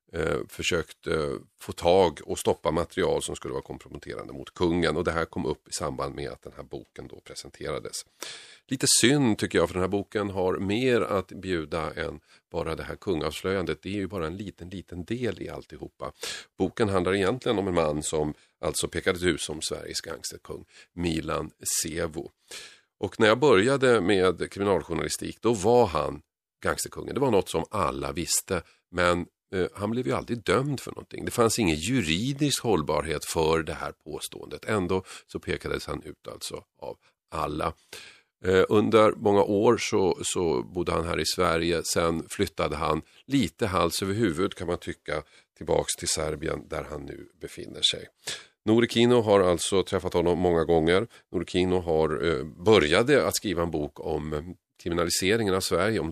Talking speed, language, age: 165 wpm, Swedish, 40-59